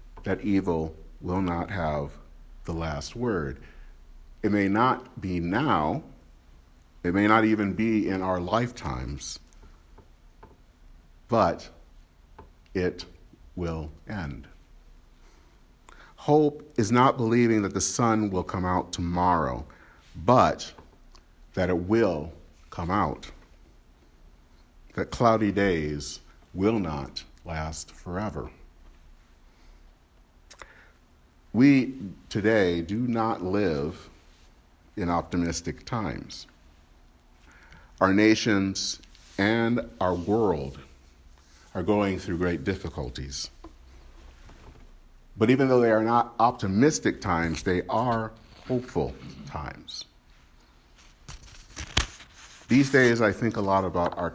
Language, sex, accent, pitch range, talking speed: English, male, American, 75-100 Hz, 95 wpm